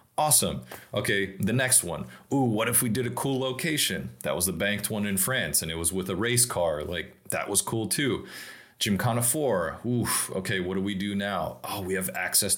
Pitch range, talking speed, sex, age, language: 90-110 Hz, 215 wpm, male, 30-49, English